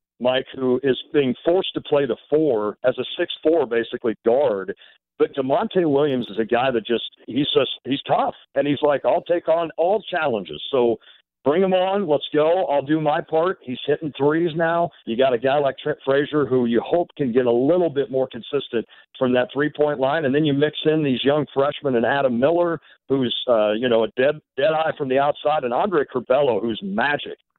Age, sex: 50-69, male